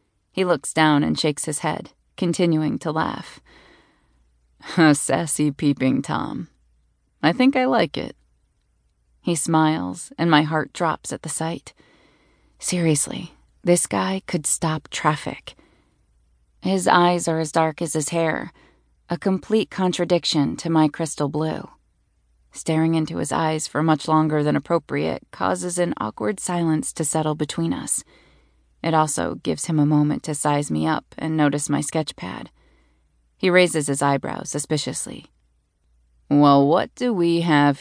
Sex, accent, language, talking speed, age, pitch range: female, American, English, 145 wpm, 30-49, 145-175 Hz